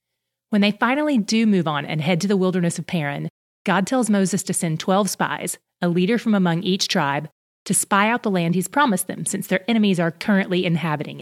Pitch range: 165-210 Hz